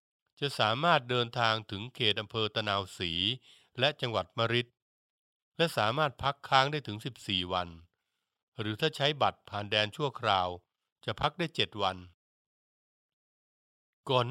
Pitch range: 105-140 Hz